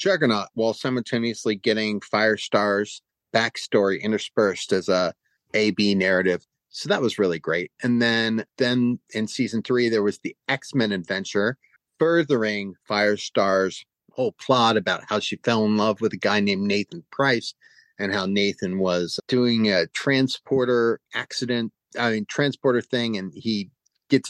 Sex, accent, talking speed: male, American, 145 wpm